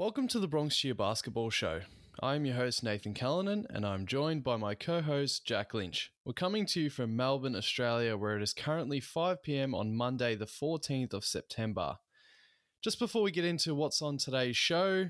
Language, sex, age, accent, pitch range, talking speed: English, male, 20-39, Australian, 110-145 Hz, 185 wpm